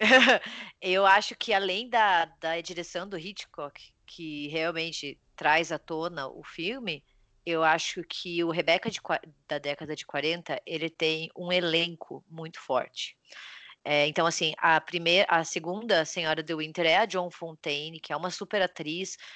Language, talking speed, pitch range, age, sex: Portuguese, 160 wpm, 165-195 Hz, 20-39, female